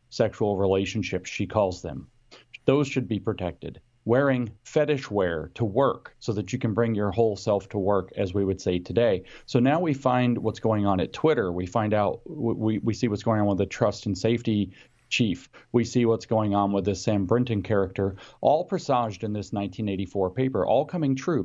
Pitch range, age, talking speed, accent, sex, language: 100-120 Hz, 40-59, 200 wpm, American, male, English